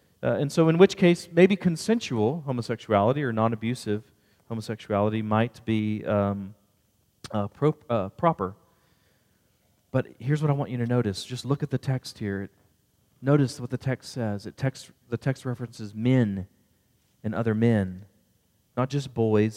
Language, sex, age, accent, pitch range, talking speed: English, male, 40-59, American, 105-135 Hz, 155 wpm